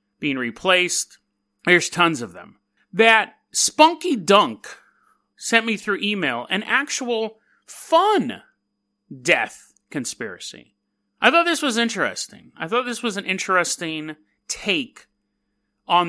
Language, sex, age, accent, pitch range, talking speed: English, male, 30-49, American, 160-225 Hz, 115 wpm